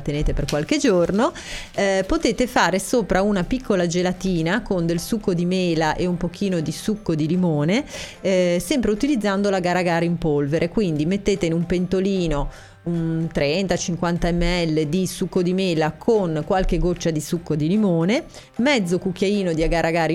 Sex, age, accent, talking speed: female, 30-49, native, 165 wpm